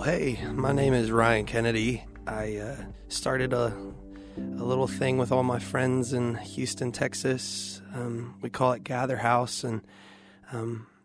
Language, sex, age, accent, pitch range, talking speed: English, male, 20-39, American, 115-135 Hz, 150 wpm